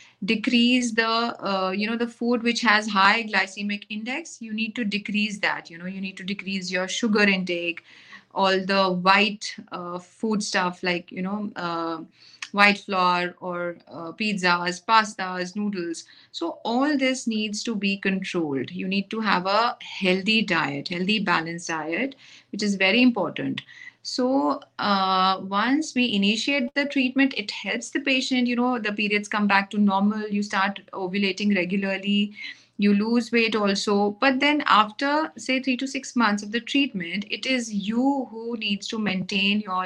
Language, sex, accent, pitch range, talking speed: English, female, Indian, 195-245 Hz, 165 wpm